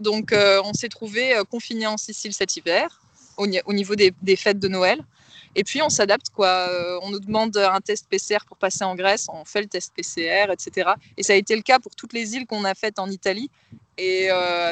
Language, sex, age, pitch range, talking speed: French, female, 20-39, 185-225 Hz, 230 wpm